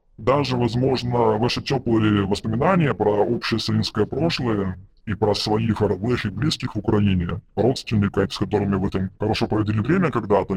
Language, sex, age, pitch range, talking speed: Russian, female, 30-49, 95-120 Hz, 150 wpm